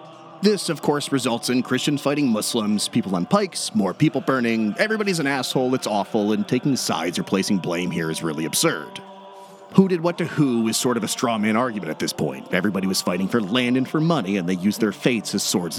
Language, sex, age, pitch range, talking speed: English, male, 30-49, 100-170 Hz, 225 wpm